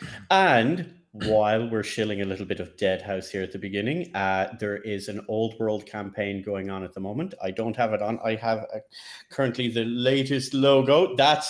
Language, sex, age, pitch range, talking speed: English, male, 30-49, 105-130 Hz, 200 wpm